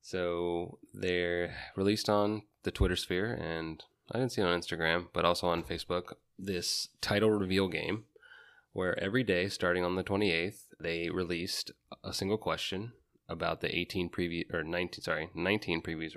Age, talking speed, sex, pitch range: 20-39, 165 wpm, male, 85-100 Hz